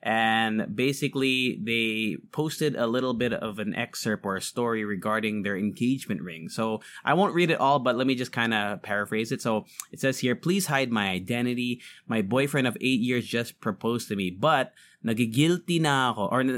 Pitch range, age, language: 105-135 Hz, 20-39, English